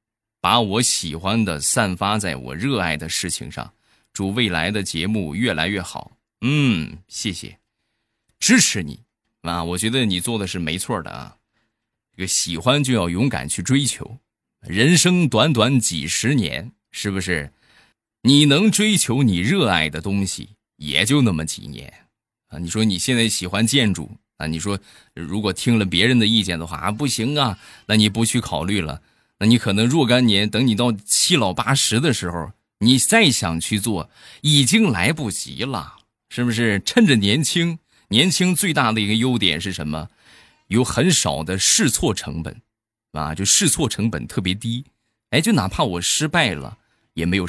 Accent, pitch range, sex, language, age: native, 85-125 Hz, male, Chinese, 20-39